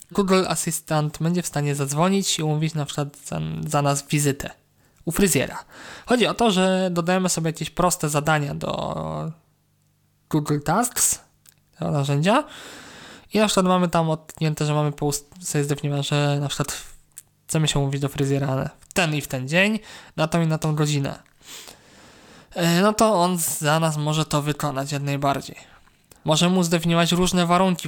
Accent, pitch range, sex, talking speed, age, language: native, 145-170 Hz, male, 165 wpm, 20-39, Polish